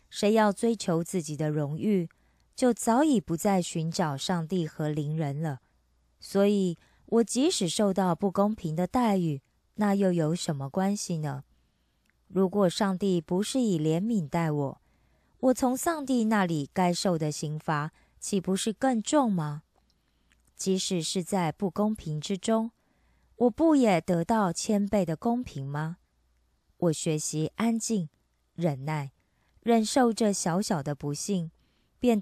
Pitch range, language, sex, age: 155-210 Hz, Korean, female, 20-39